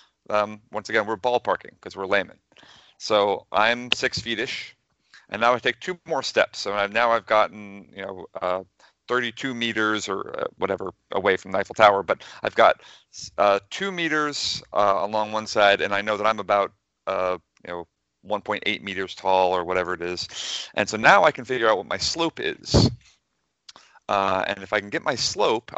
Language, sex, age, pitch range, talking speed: English, male, 40-59, 95-120 Hz, 190 wpm